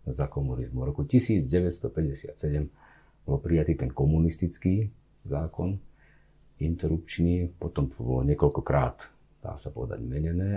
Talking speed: 95 wpm